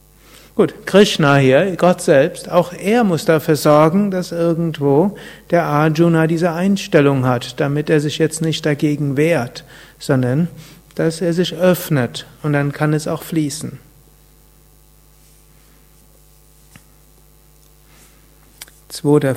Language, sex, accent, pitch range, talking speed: German, male, German, 140-175 Hz, 110 wpm